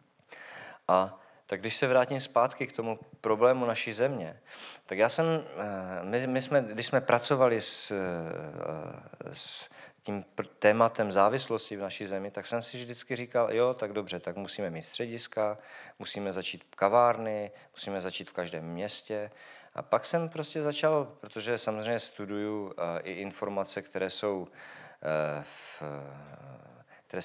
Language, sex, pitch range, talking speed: Czech, male, 95-120 Hz, 135 wpm